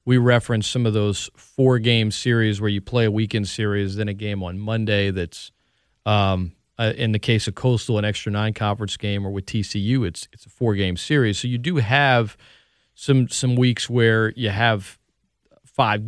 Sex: male